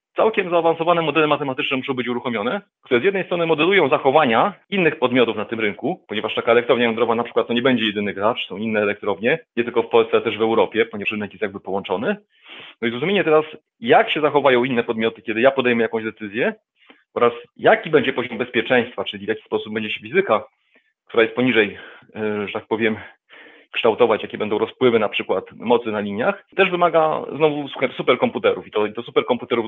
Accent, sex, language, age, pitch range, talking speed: native, male, Polish, 30-49, 115-165 Hz, 190 wpm